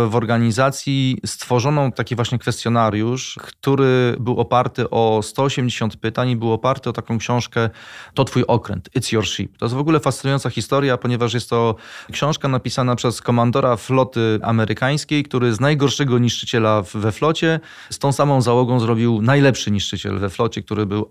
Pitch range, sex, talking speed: 105-125 Hz, male, 160 wpm